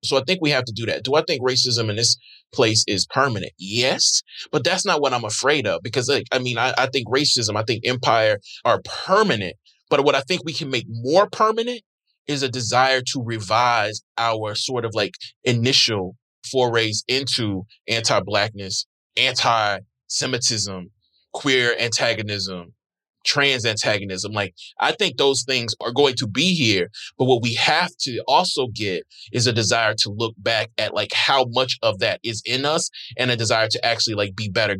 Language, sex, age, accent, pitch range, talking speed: English, male, 20-39, American, 105-130 Hz, 180 wpm